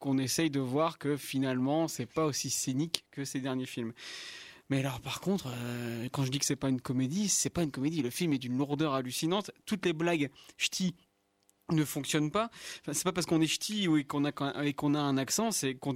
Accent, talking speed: French, 230 wpm